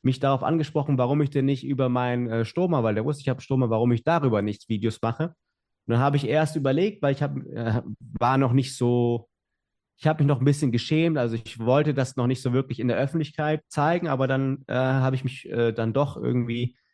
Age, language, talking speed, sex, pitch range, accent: 30-49, English, 230 wpm, male, 115-145 Hz, German